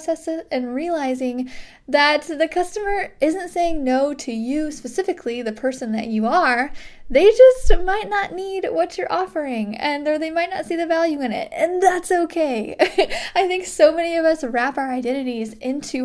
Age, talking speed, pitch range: 10-29, 175 wpm, 255-340 Hz